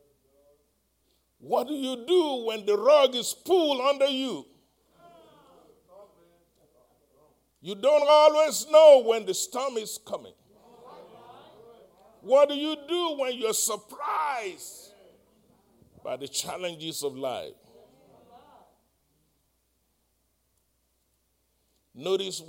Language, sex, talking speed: English, male, 90 wpm